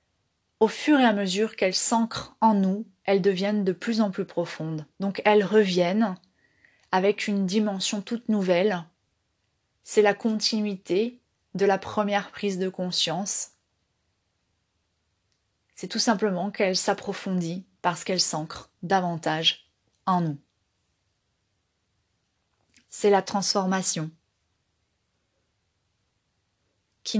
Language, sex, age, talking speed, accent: French, female, 30-49, 105 wpm, French